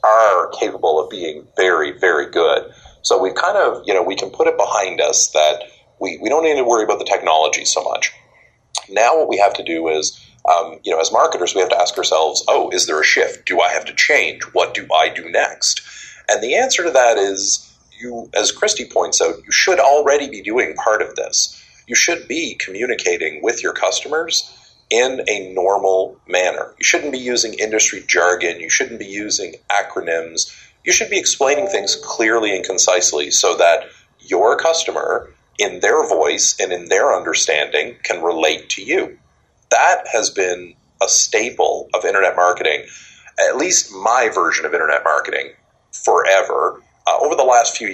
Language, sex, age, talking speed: English, male, 40-59, 185 wpm